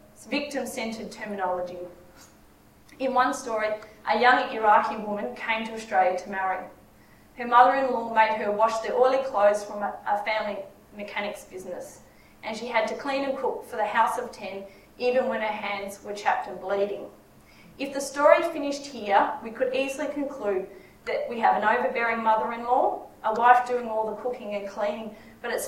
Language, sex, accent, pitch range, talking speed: English, female, Australian, 205-250 Hz, 170 wpm